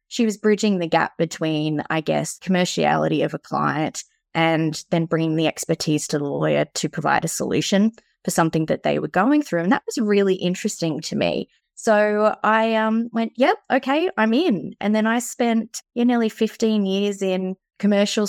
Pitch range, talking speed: 165-215 Hz, 185 wpm